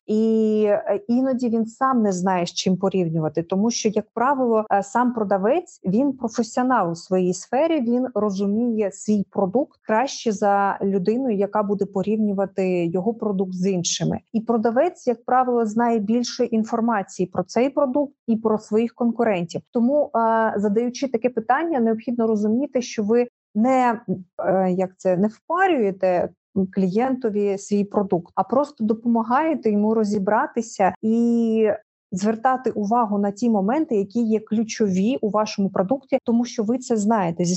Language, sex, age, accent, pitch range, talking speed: Ukrainian, female, 30-49, native, 200-235 Hz, 140 wpm